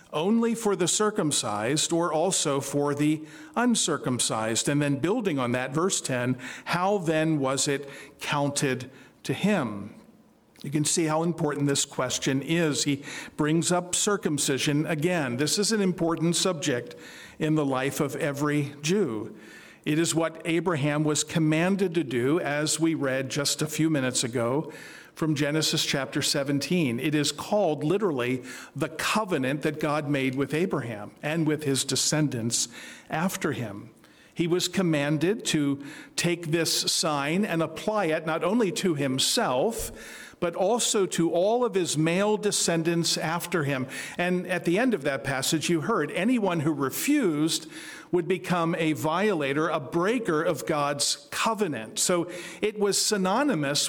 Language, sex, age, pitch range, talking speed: English, male, 50-69, 145-180 Hz, 150 wpm